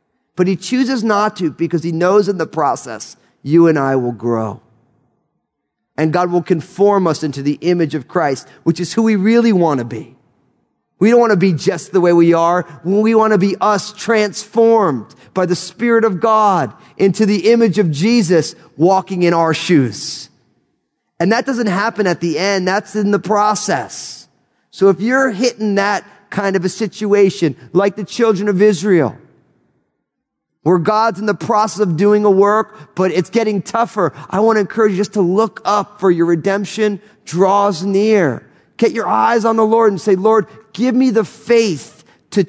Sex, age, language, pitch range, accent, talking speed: male, 30-49, English, 165-210 Hz, American, 185 wpm